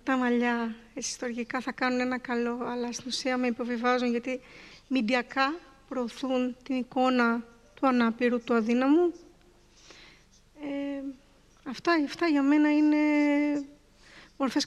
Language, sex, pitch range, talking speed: Greek, female, 240-280 Hz, 110 wpm